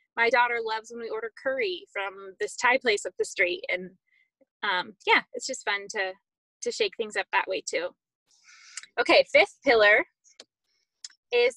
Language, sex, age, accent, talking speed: English, female, 10-29, American, 165 wpm